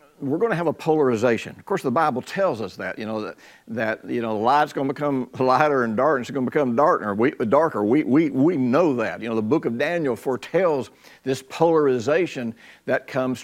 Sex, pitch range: male, 115-160 Hz